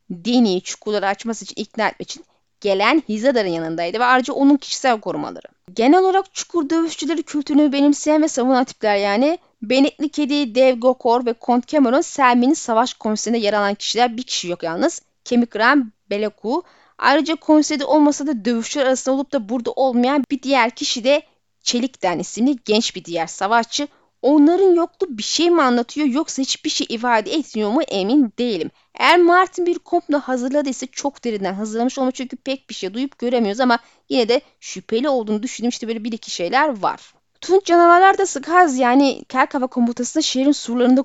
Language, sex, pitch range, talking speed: Turkish, female, 230-295 Hz, 170 wpm